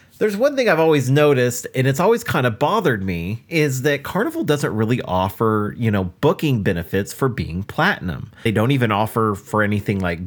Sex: male